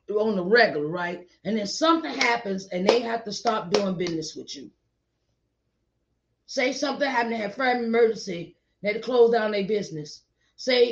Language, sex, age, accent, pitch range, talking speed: English, female, 30-49, American, 165-220 Hz, 175 wpm